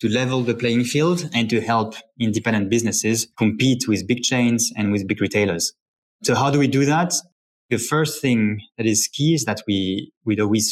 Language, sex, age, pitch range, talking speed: English, male, 20-39, 95-115 Hz, 195 wpm